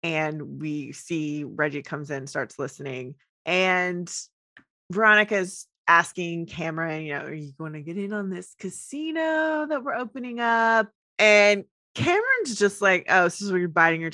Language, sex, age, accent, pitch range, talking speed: English, female, 20-39, American, 165-215 Hz, 160 wpm